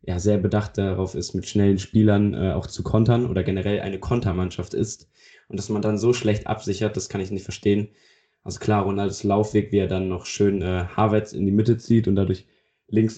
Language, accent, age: German, German, 20-39